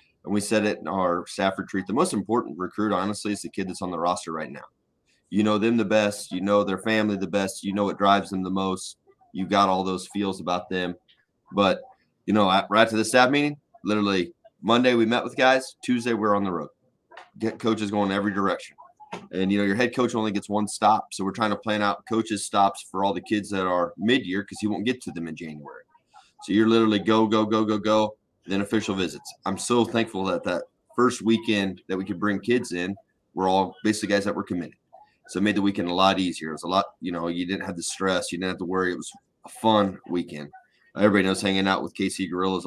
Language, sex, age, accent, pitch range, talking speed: English, male, 30-49, American, 95-110 Hz, 240 wpm